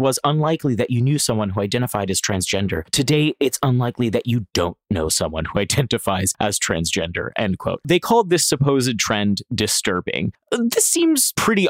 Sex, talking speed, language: male, 170 wpm, English